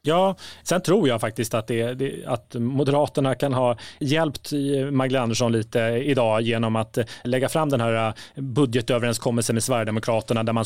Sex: male